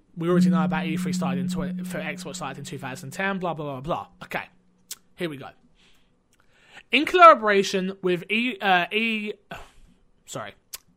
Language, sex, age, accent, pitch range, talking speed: English, male, 20-39, British, 155-210 Hz, 150 wpm